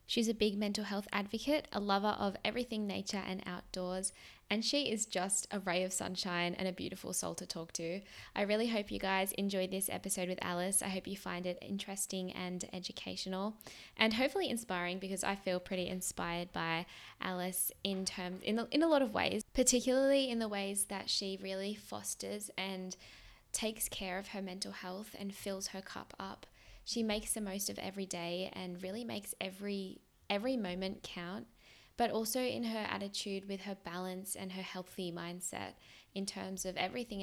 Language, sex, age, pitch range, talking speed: English, female, 10-29, 185-215 Hz, 185 wpm